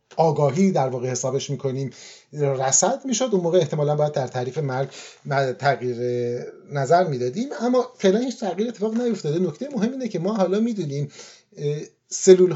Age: 30-49